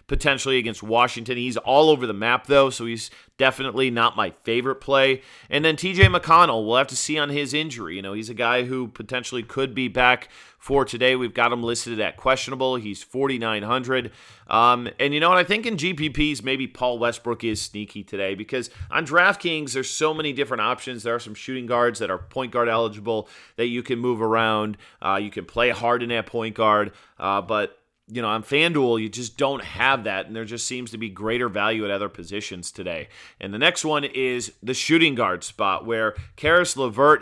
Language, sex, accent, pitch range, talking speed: English, male, American, 110-135 Hz, 205 wpm